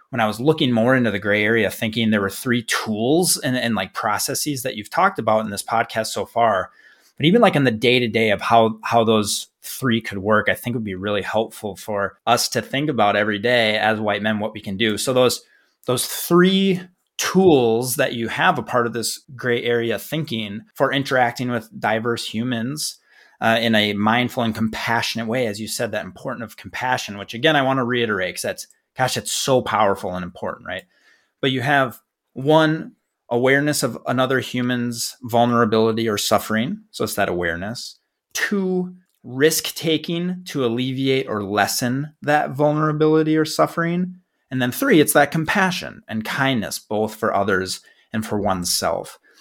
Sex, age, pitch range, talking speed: male, 30-49, 110-145 Hz, 185 wpm